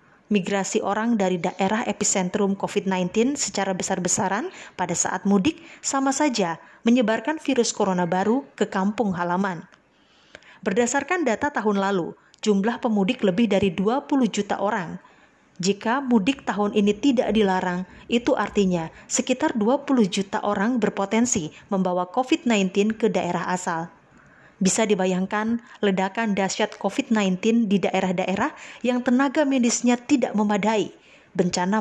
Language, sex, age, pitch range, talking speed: Indonesian, female, 20-39, 190-245 Hz, 115 wpm